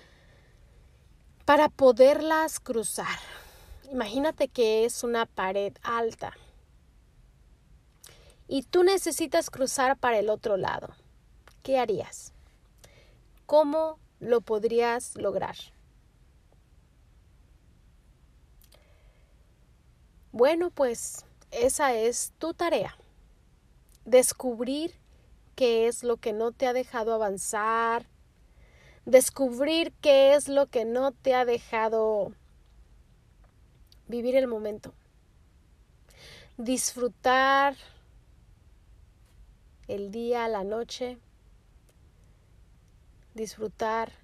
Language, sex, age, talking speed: Spanish, female, 30-49, 75 wpm